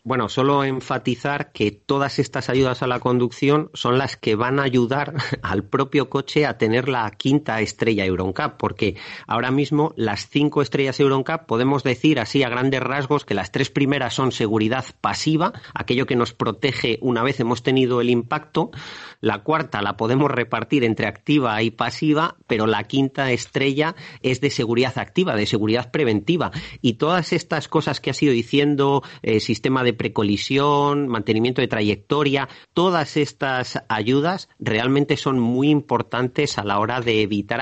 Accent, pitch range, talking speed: Spanish, 110-140 Hz, 165 wpm